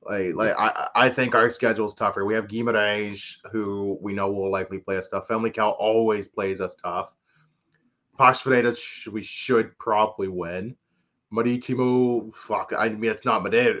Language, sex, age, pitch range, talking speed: English, male, 20-39, 105-120 Hz, 170 wpm